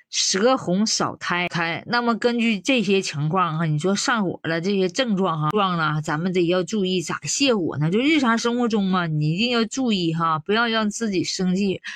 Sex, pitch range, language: female, 170-235 Hz, Chinese